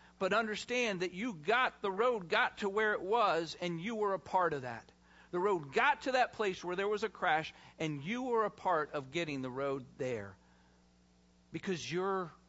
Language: English